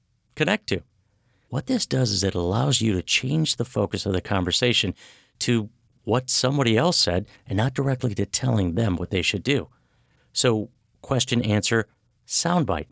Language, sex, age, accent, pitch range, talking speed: English, male, 50-69, American, 100-125 Hz, 165 wpm